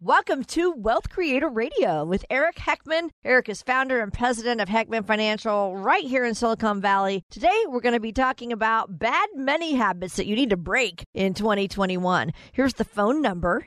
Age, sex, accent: 50-69, female, American